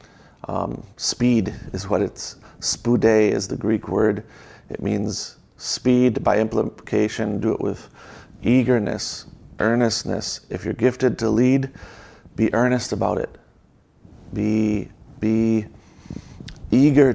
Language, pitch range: English, 105-120 Hz